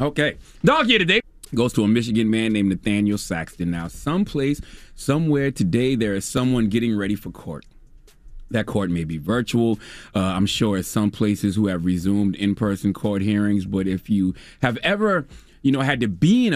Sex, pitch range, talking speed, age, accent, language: male, 100-135 Hz, 185 wpm, 30-49, American, English